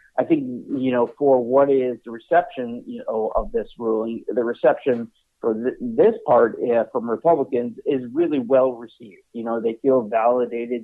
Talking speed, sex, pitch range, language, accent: 175 wpm, male, 115-130 Hz, English, American